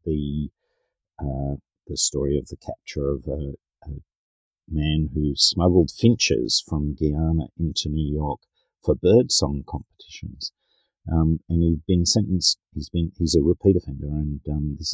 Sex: male